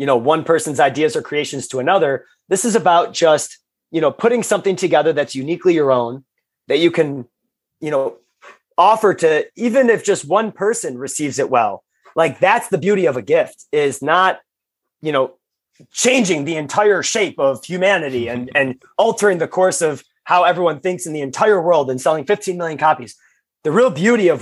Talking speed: 185 wpm